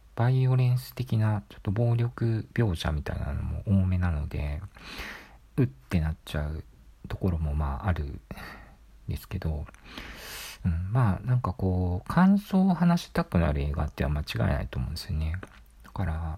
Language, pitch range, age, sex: Japanese, 75-105 Hz, 50-69, male